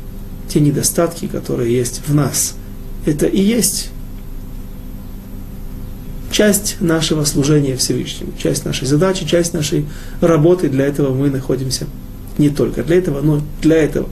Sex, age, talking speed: male, 30-49, 130 wpm